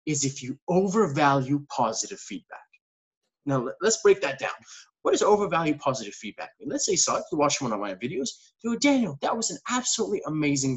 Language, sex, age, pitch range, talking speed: English, male, 20-39, 135-195 Hz, 205 wpm